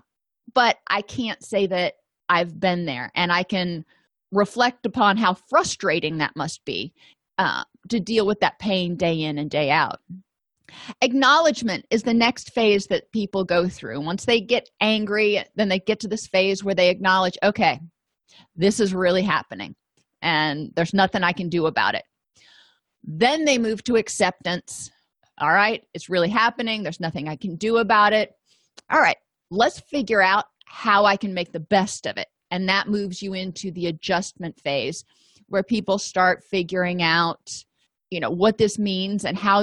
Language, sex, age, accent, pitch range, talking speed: English, female, 30-49, American, 180-230 Hz, 175 wpm